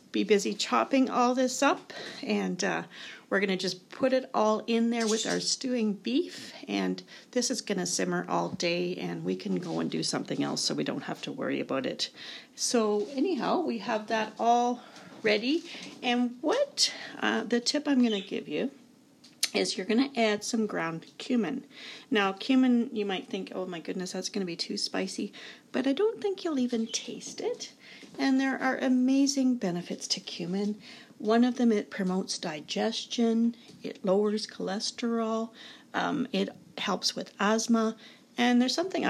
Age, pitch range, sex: 40-59, 200-260 Hz, female